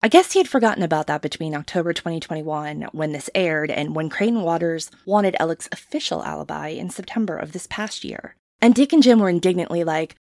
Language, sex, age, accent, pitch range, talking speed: English, female, 20-39, American, 165-230 Hz, 200 wpm